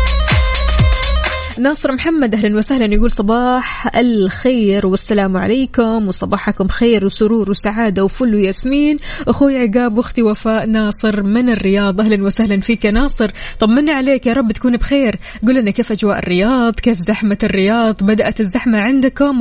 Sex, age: female, 20-39